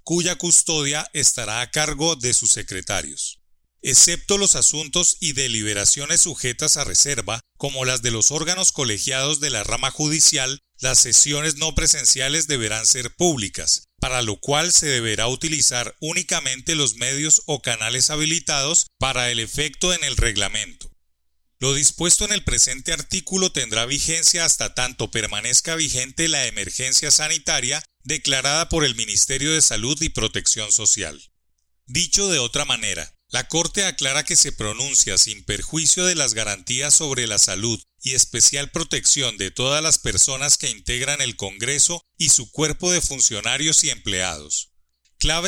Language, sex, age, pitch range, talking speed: Spanish, male, 30-49, 115-155 Hz, 150 wpm